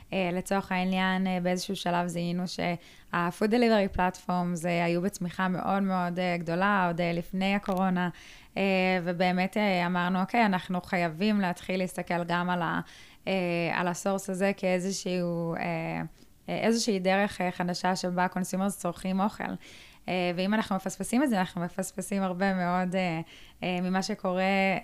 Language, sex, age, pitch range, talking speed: Hebrew, female, 20-39, 175-195 Hz, 115 wpm